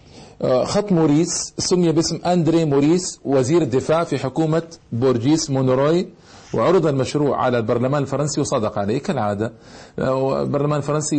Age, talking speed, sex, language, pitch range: 40-59, 120 wpm, male, Arabic, 125-155 Hz